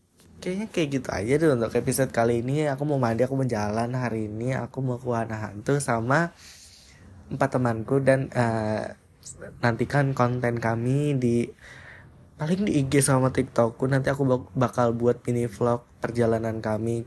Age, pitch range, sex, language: 20-39, 115-140 Hz, male, Indonesian